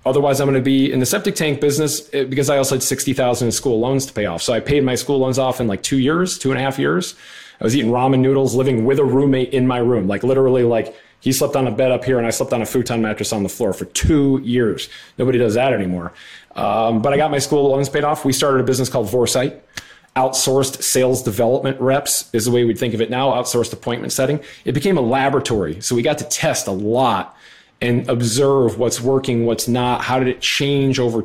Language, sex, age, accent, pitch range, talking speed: English, male, 30-49, American, 115-135 Hz, 250 wpm